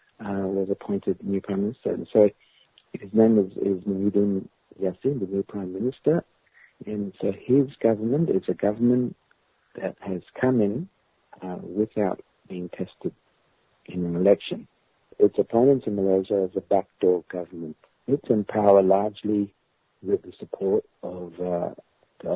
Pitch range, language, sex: 85-105 Hz, English, male